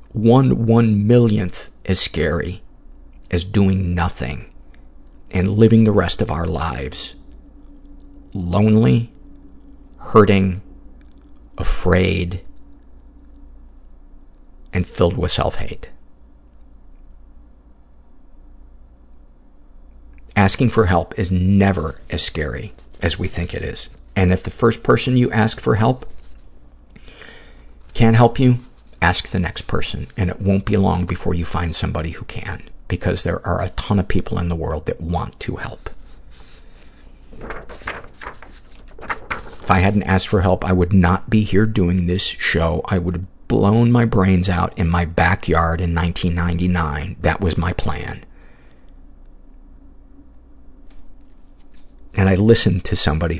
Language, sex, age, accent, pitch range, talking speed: English, male, 50-69, American, 70-100 Hz, 125 wpm